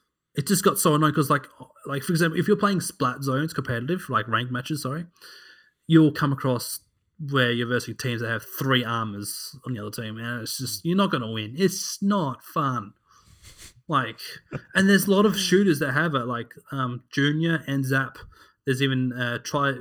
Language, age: English, 20-39